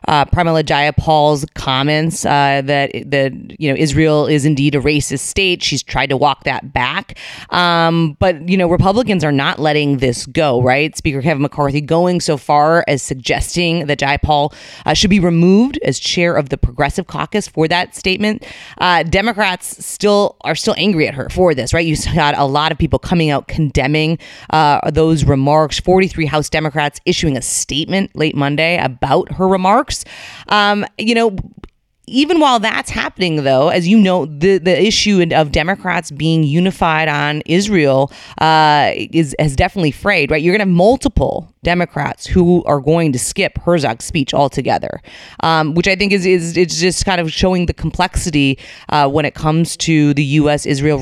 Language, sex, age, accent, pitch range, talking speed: English, female, 30-49, American, 145-180 Hz, 175 wpm